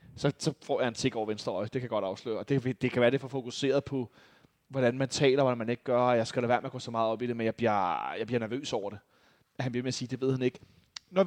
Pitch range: 135-180 Hz